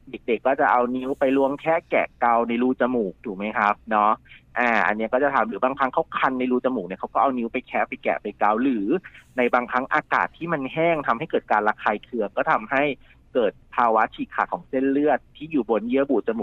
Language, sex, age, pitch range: Thai, male, 30-49, 115-140 Hz